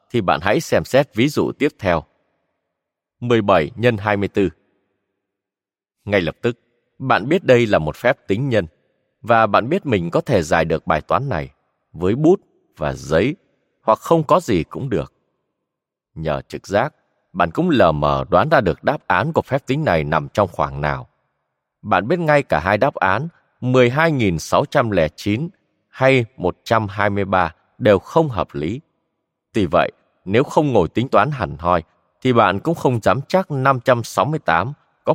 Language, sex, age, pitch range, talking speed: Vietnamese, male, 20-39, 90-135 Hz, 160 wpm